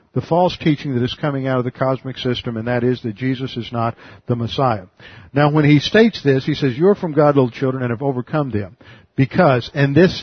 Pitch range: 125-155 Hz